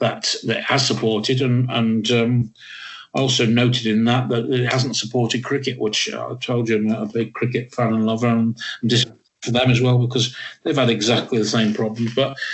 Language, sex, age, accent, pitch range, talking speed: English, male, 50-69, British, 110-125 Hz, 185 wpm